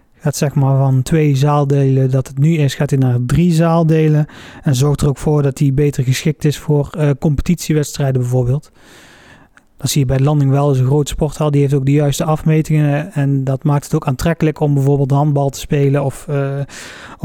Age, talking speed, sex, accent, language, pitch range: 30-49, 210 wpm, male, Dutch, Dutch, 140-155 Hz